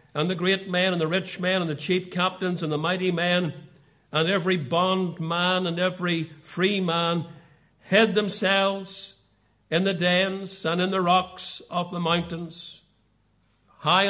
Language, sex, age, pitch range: English, male, 60-79, 135-185 Hz